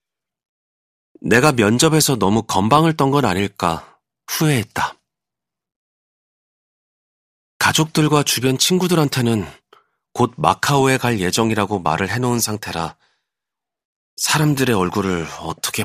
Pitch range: 90-145 Hz